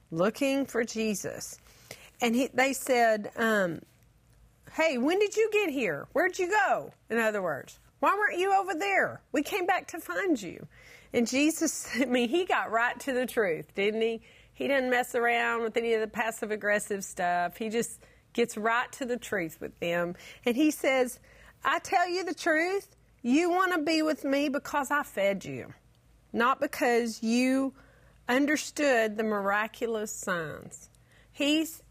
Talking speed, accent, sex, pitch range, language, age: 170 wpm, American, female, 215-295 Hz, English, 40-59